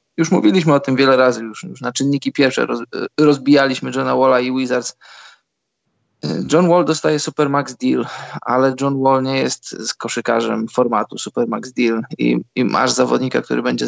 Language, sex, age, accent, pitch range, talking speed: Polish, male, 20-39, native, 125-145 Hz, 160 wpm